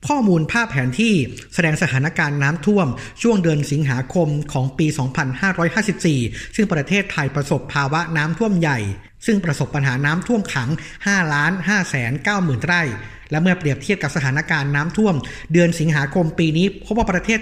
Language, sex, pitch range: Thai, male, 140-180 Hz